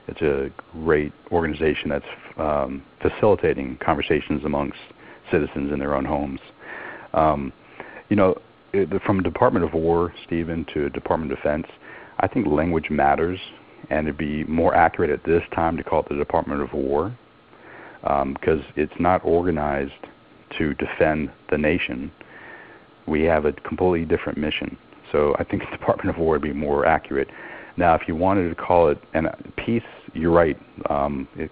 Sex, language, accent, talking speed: male, English, American, 165 wpm